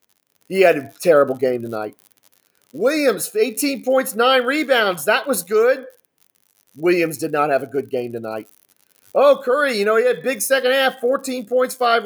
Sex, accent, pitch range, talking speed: male, American, 190-255 Hz, 170 wpm